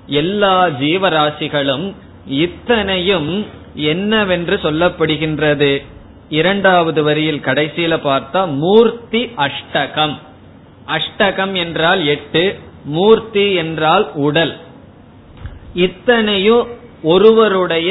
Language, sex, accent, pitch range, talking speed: Tamil, male, native, 145-190 Hz, 65 wpm